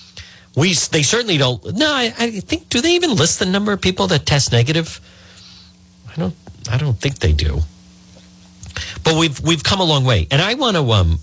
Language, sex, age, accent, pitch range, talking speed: English, male, 50-69, American, 90-150 Hz, 205 wpm